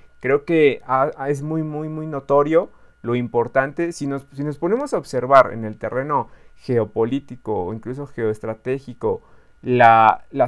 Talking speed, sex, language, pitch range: 155 wpm, male, Spanish, 120-175 Hz